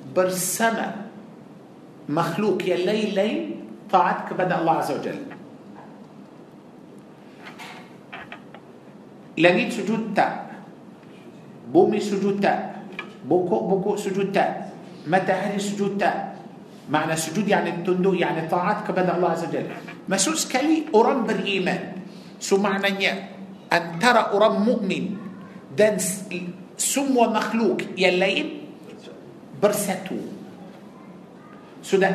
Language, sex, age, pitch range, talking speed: Malay, male, 50-69, 185-220 Hz, 85 wpm